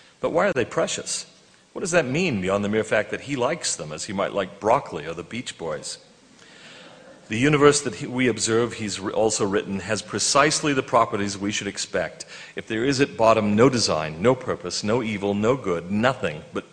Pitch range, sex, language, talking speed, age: 105-130 Hz, male, English, 200 wpm, 40-59